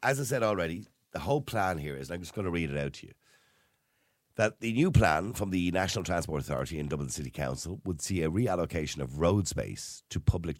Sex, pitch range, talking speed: male, 70-95 Hz, 230 wpm